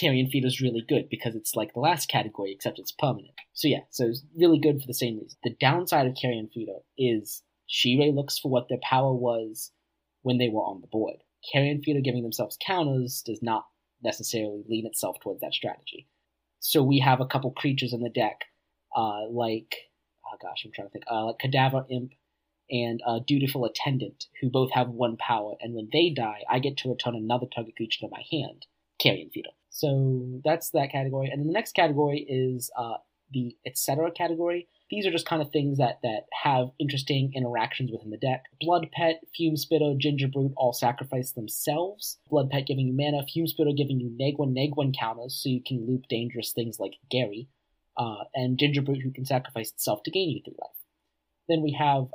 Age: 20-39